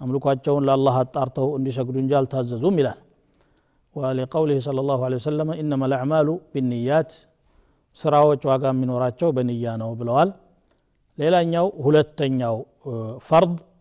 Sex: male